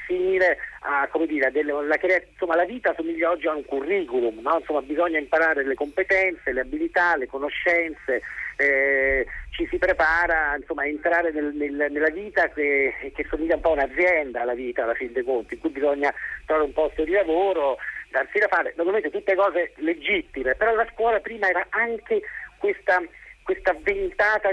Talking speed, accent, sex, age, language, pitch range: 175 wpm, native, male, 50-69, Italian, 155-210 Hz